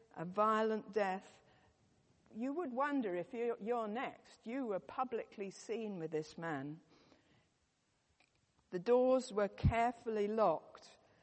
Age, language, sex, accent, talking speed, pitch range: 50-69, English, female, British, 120 wpm, 190-235 Hz